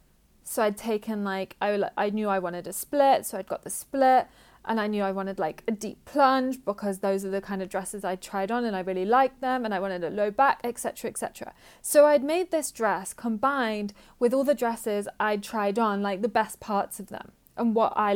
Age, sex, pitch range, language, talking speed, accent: 30-49, female, 195-240 Hz, English, 240 wpm, British